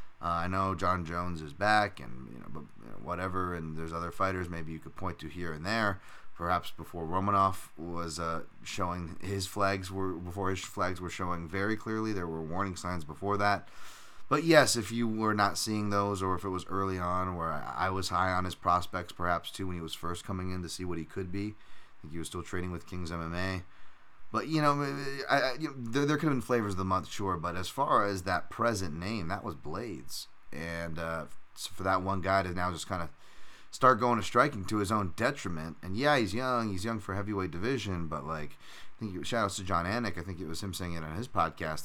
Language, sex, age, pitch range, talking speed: English, male, 30-49, 85-105 Hz, 230 wpm